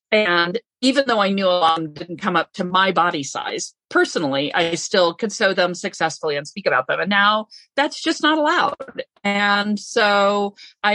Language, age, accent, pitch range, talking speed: English, 40-59, American, 180-235 Hz, 195 wpm